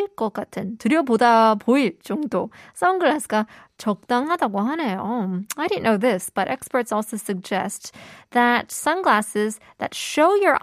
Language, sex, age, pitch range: Korean, female, 20-39, 205-280 Hz